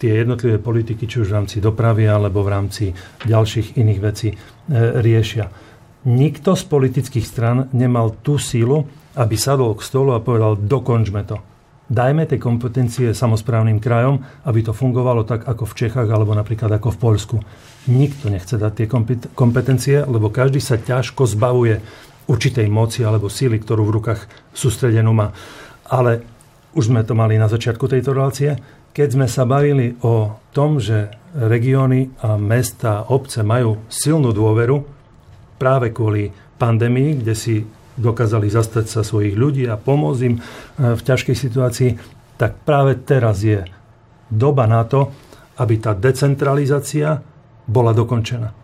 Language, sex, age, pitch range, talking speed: Slovak, male, 40-59, 110-135 Hz, 145 wpm